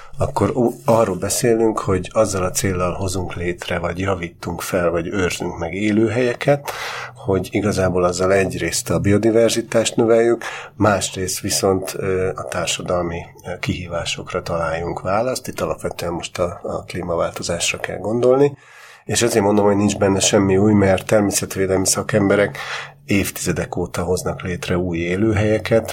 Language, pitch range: Hungarian, 90-115 Hz